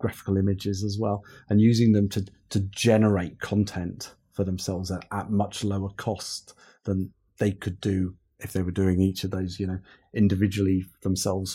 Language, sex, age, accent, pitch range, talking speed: English, male, 30-49, British, 95-105 Hz, 170 wpm